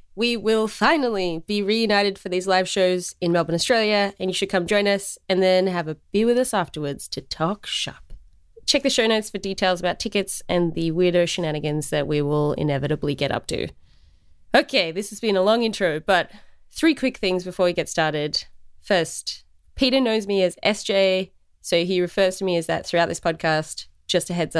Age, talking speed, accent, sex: 20-39, 200 wpm, Australian, female